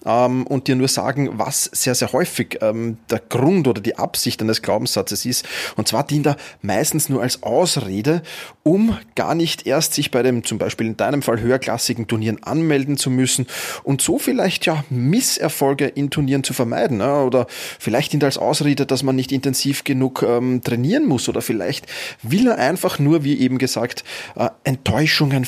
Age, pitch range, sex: 30-49, 120-150 Hz, male